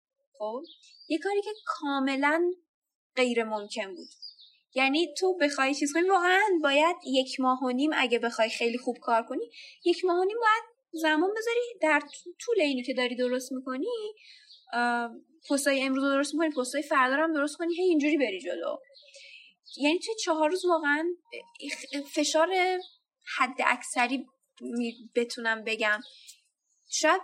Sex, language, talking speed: female, Persian, 145 wpm